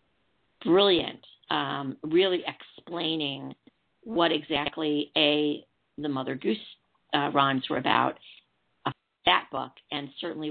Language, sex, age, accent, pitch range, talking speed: English, female, 50-69, American, 145-190 Hz, 110 wpm